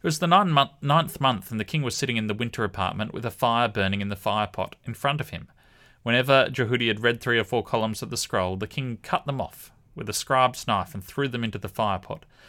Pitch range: 105-130 Hz